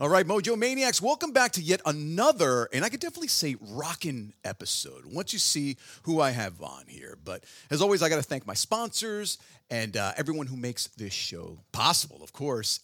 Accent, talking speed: American, 200 wpm